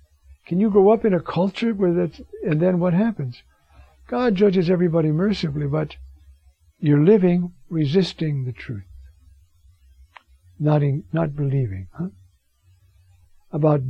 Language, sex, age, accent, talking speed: English, male, 60-79, American, 125 wpm